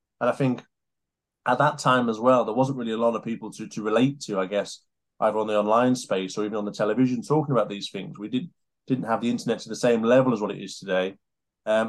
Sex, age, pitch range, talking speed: male, 20-39, 110-135 Hz, 250 wpm